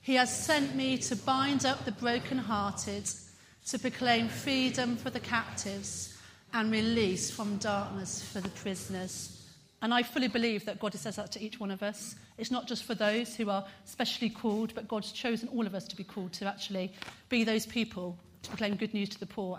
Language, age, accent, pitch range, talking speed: English, 40-59, British, 185-240 Hz, 200 wpm